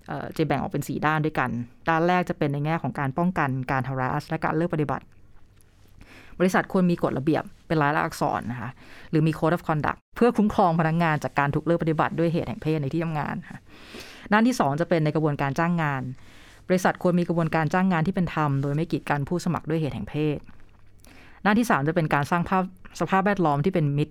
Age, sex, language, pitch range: 30-49, female, Thai, 135-175 Hz